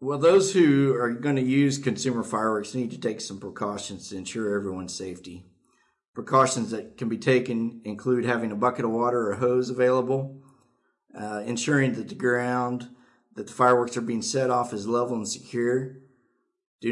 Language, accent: English, American